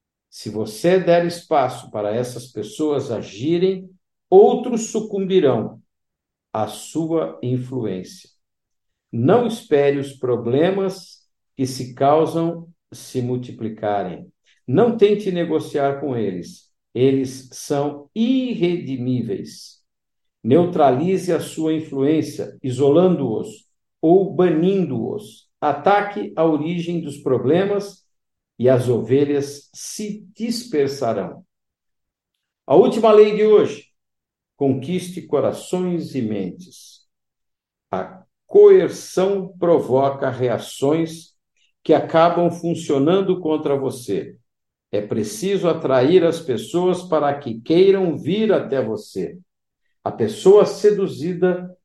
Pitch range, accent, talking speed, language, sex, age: 130-185 Hz, Brazilian, 90 wpm, Portuguese, male, 50-69